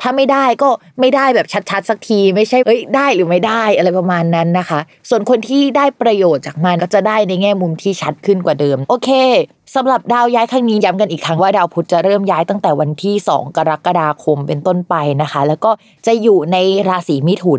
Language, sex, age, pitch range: Thai, female, 20-39, 165-215 Hz